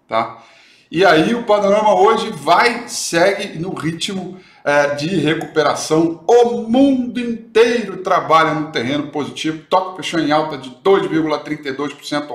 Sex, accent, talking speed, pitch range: male, Brazilian, 125 wpm, 145-185 Hz